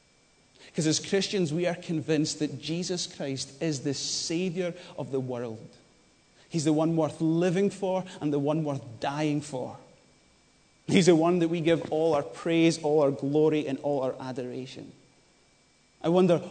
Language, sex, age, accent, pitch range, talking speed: English, male, 30-49, British, 130-160 Hz, 165 wpm